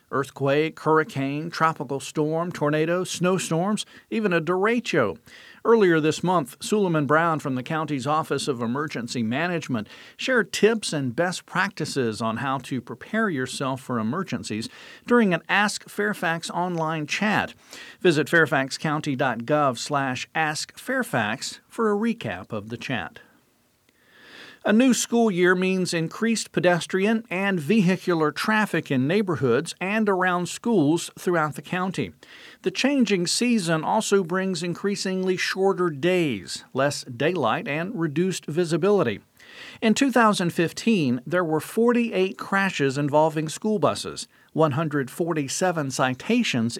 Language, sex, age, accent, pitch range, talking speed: English, male, 50-69, American, 150-200 Hz, 115 wpm